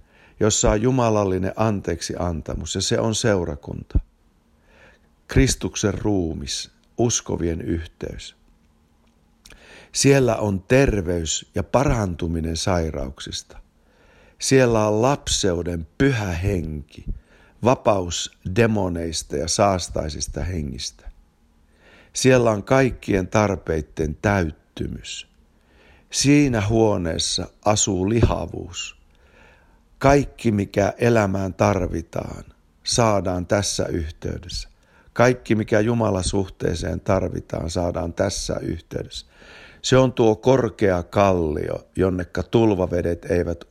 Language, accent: Finnish, native